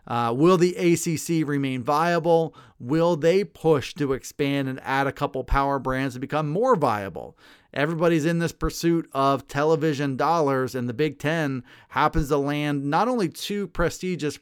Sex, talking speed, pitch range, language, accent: male, 160 wpm, 135-170 Hz, English, American